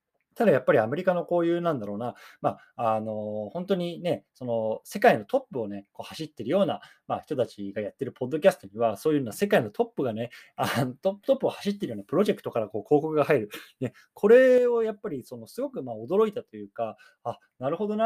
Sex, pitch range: male, 115-175 Hz